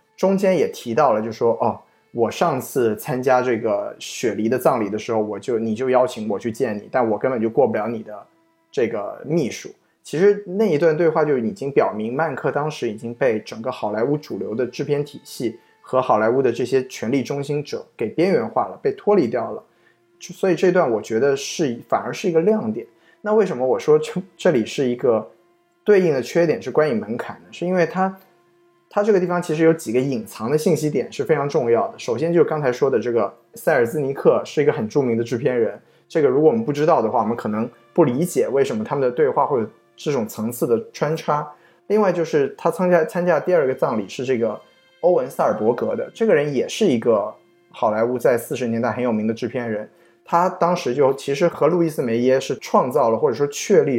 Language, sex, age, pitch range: Chinese, male, 20-39, 125-195 Hz